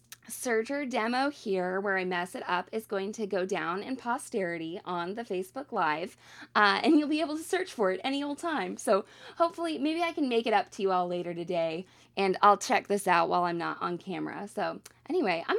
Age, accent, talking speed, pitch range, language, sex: 20-39, American, 220 wpm, 195-295 Hz, English, female